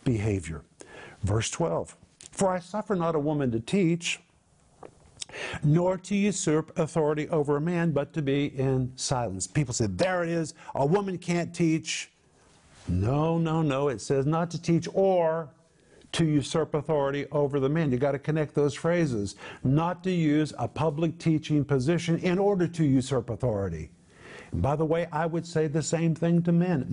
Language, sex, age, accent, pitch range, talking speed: English, male, 50-69, American, 140-170 Hz, 170 wpm